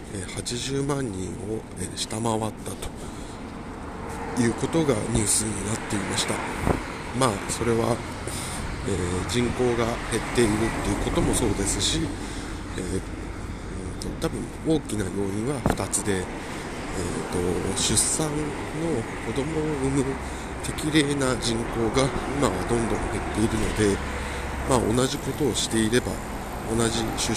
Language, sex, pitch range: Japanese, male, 95-120 Hz